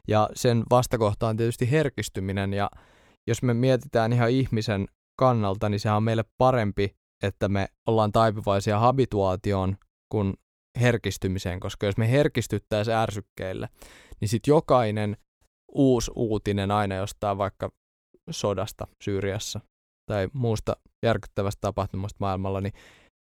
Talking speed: 120 wpm